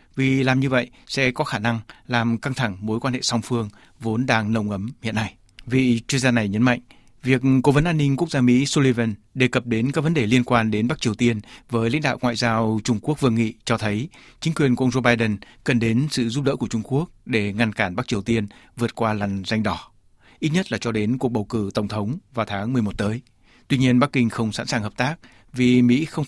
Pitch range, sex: 110-130 Hz, male